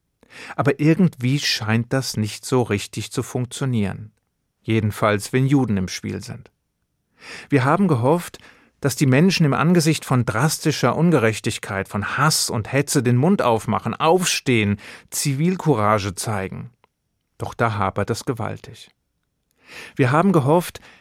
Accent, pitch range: German, 110-145 Hz